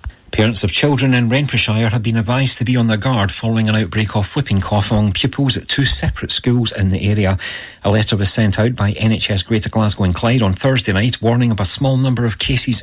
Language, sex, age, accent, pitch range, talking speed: English, male, 40-59, British, 100-125 Hz, 230 wpm